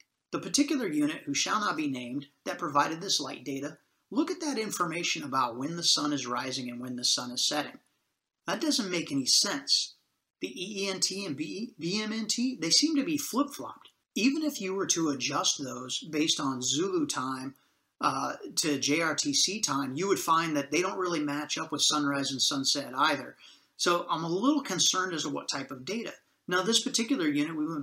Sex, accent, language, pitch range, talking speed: male, American, English, 140-215 Hz, 190 wpm